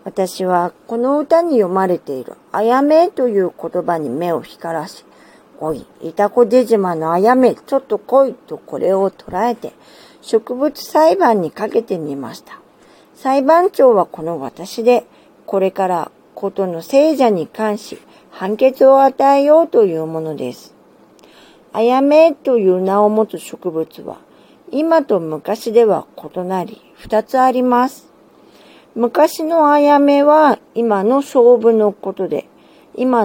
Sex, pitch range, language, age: female, 190-275 Hz, Japanese, 50-69